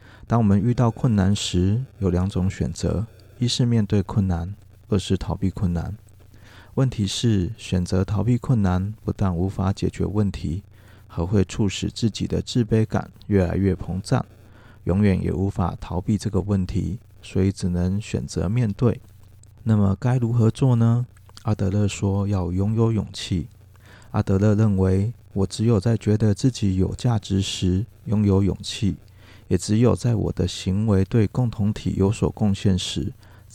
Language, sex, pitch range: Chinese, male, 95-110 Hz